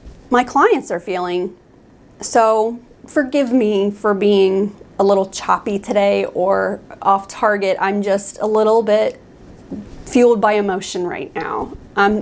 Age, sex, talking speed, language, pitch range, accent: 30-49, female, 135 wpm, English, 200-270 Hz, American